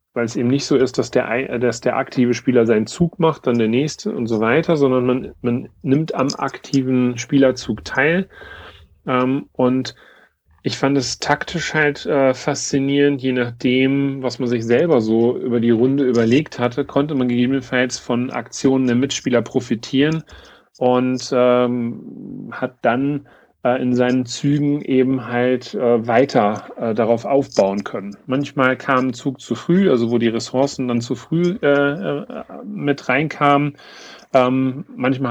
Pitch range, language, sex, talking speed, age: 120-140 Hz, German, male, 145 wpm, 40-59